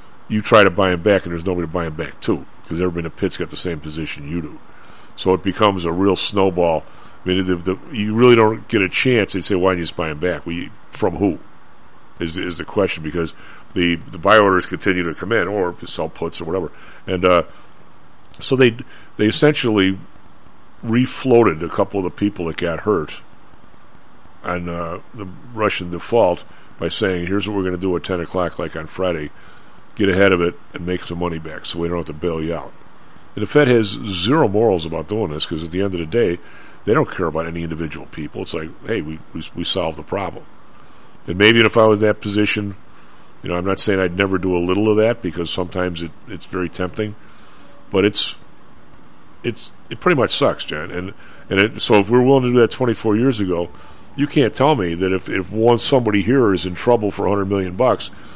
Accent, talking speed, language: American, 225 wpm, English